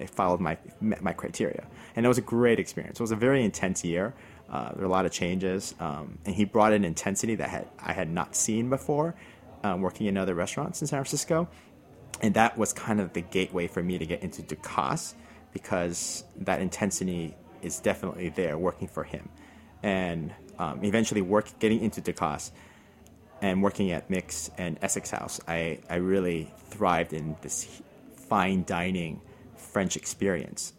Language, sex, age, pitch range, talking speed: English, male, 30-49, 90-110 Hz, 180 wpm